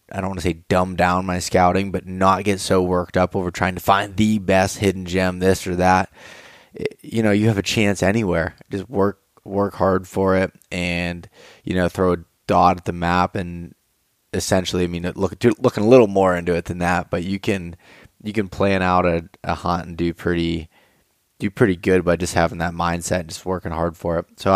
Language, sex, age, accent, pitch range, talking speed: English, male, 20-39, American, 90-105 Hz, 215 wpm